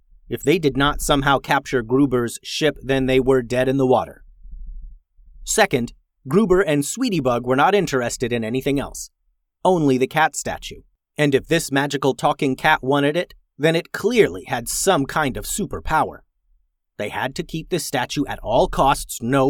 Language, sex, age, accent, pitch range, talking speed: English, male, 30-49, American, 125-160 Hz, 170 wpm